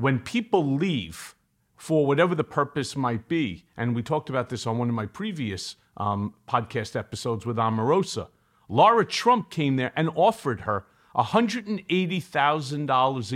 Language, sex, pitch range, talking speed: English, male, 135-180 Hz, 145 wpm